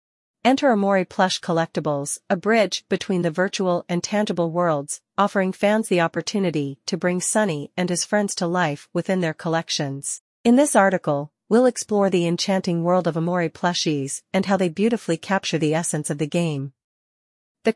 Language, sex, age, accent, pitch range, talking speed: English, female, 40-59, American, 165-200 Hz, 165 wpm